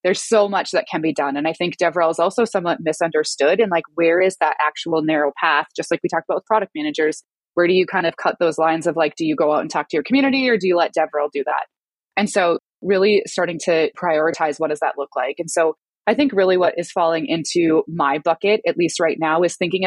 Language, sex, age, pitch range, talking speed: English, female, 20-39, 160-195 Hz, 255 wpm